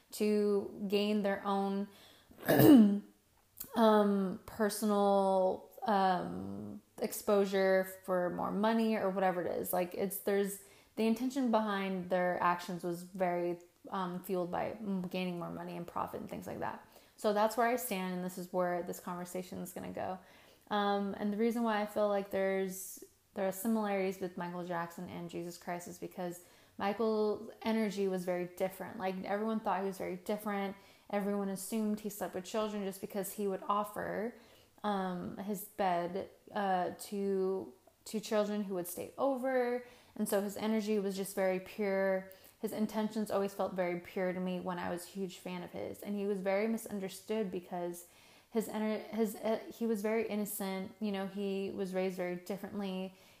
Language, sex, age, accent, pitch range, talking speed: English, female, 20-39, American, 185-210 Hz, 170 wpm